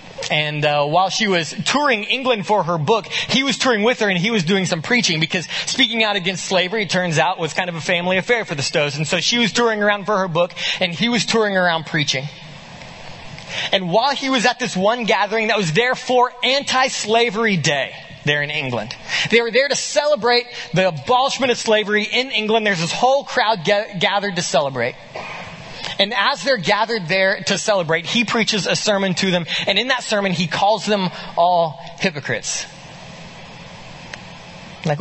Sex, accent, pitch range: male, American, 180-245 Hz